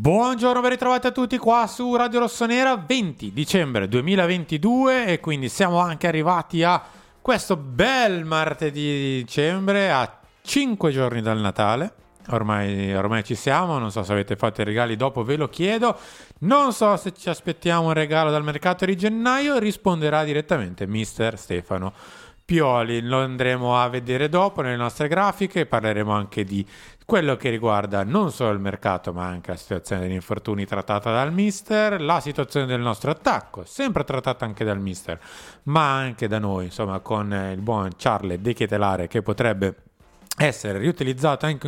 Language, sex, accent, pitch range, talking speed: Italian, male, native, 105-175 Hz, 160 wpm